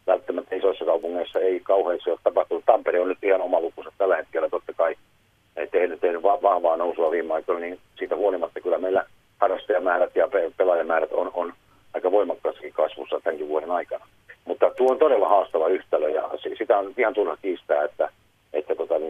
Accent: native